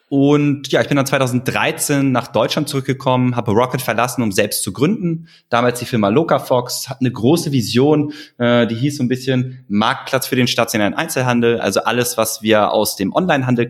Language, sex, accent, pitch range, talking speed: German, male, German, 105-130 Hz, 180 wpm